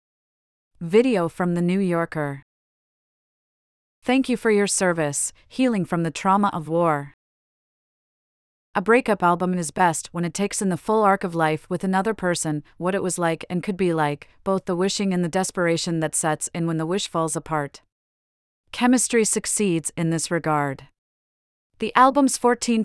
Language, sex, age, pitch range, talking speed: English, female, 30-49, 165-195 Hz, 165 wpm